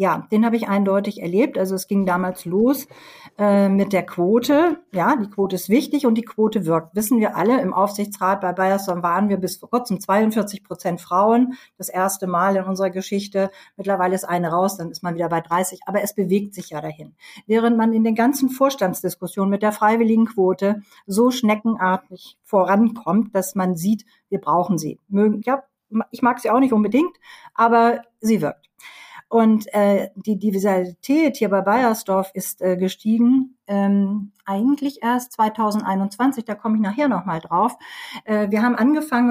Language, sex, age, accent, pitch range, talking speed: German, female, 50-69, German, 190-235 Hz, 175 wpm